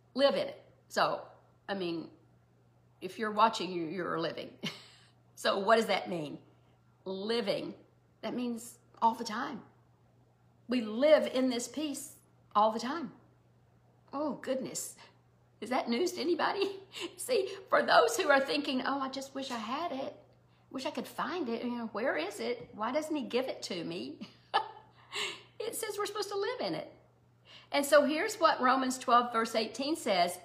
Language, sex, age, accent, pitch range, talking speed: English, female, 50-69, American, 225-295 Hz, 170 wpm